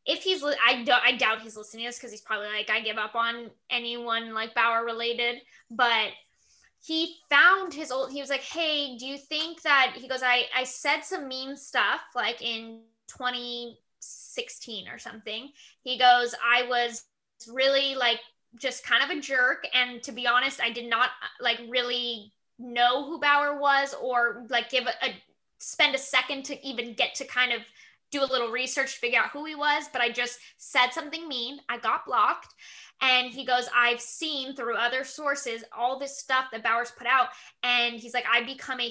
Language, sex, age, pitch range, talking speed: English, female, 10-29, 240-275 Hz, 195 wpm